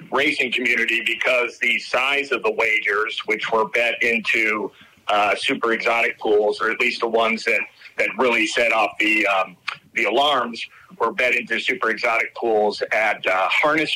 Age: 40-59